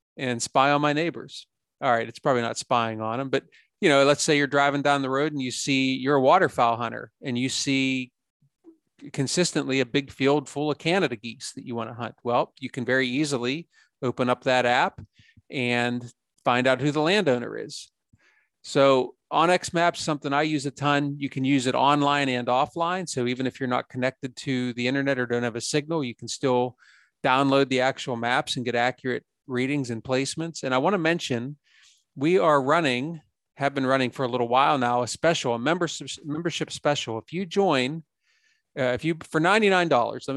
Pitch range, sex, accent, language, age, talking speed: 125-145 Hz, male, American, English, 40-59, 200 wpm